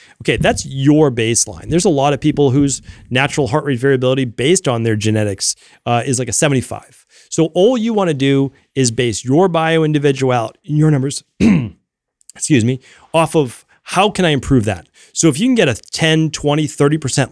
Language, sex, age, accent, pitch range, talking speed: English, male, 30-49, American, 120-155 Hz, 180 wpm